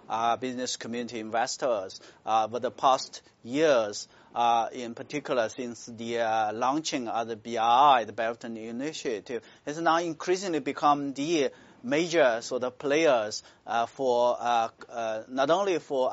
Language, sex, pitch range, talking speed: English, male, 125-185 Hz, 140 wpm